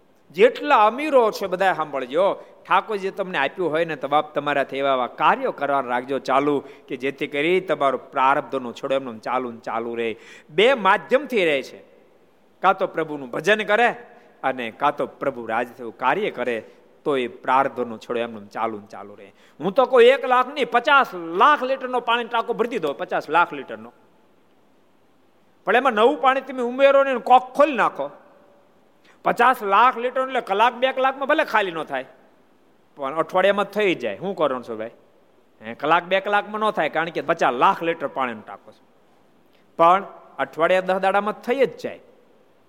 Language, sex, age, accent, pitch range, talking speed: Gujarati, male, 50-69, native, 135-225 Hz, 150 wpm